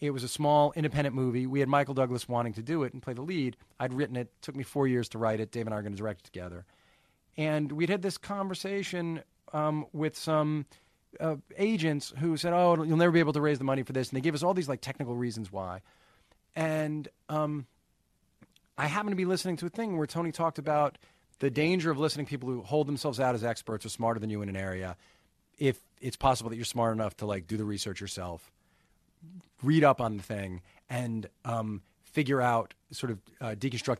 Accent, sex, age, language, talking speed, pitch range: American, male, 40-59, English, 230 wpm, 110-150 Hz